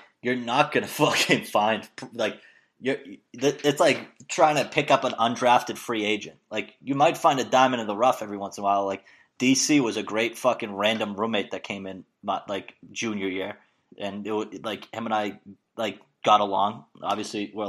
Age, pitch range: 20-39, 100-125 Hz